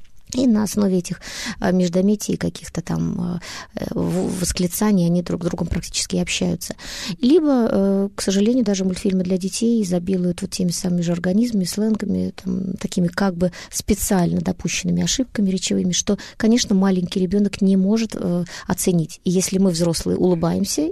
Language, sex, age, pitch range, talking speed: Russian, female, 20-39, 175-205 Hz, 140 wpm